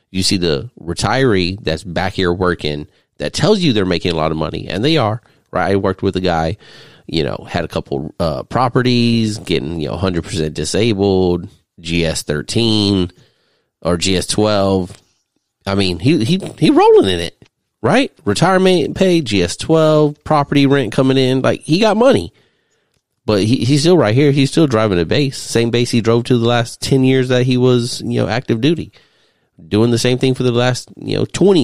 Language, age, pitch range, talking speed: English, 30-49, 95-130 Hz, 195 wpm